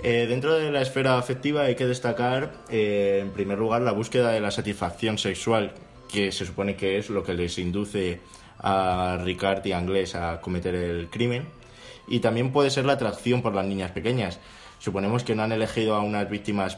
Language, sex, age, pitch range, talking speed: Spanish, male, 20-39, 100-125 Hz, 195 wpm